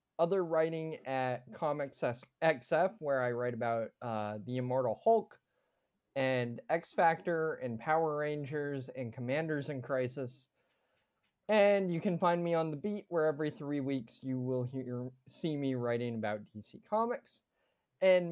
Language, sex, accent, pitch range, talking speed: English, male, American, 125-170 Hz, 145 wpm